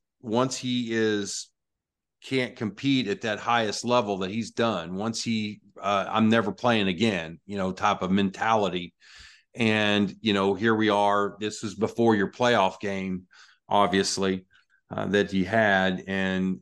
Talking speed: 150 wpm